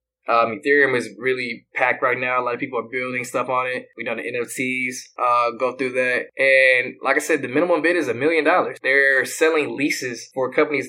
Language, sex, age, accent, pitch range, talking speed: English, male, 20-39, American, 130-155 Hz, 220 wpm